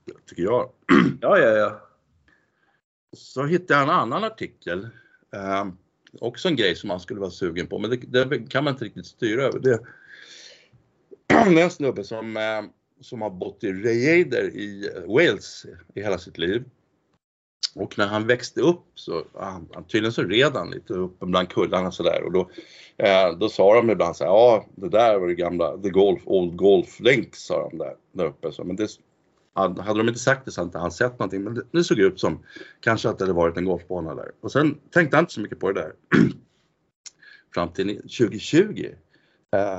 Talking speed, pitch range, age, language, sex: 190 wpm, 95-140 Hz, 50-69, Swedish, male